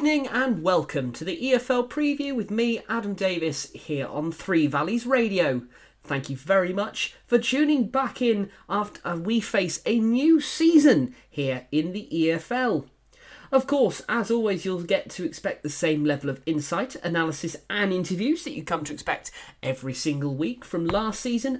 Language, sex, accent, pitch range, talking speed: English, male, British, 150-235 Hz, 170 wpm